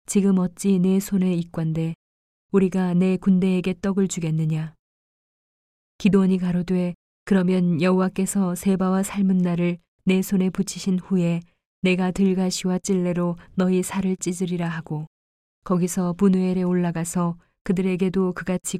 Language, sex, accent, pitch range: Korean, female, native, 170-190 Hz